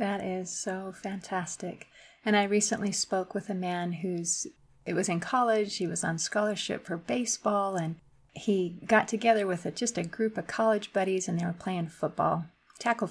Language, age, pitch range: English, 30-49, 170-210 Hz